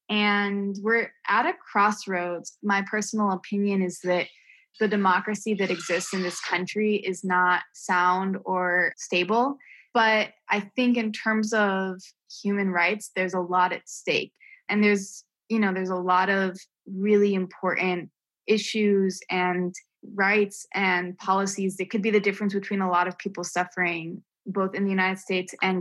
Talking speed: 155 wpm